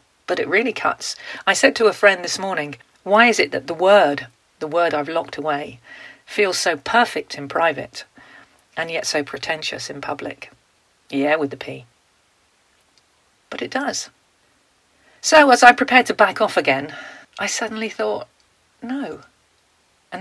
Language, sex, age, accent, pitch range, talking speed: English, female, 40-59, British, 150-200 Hz, 155 wpm